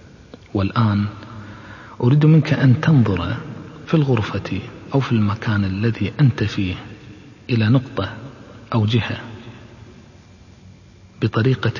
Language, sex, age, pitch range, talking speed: Arabic, male, 40-59, 100-120 Hz, 90 wpm